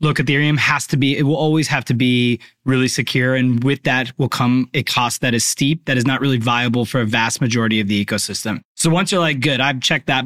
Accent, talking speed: American, 250 wpm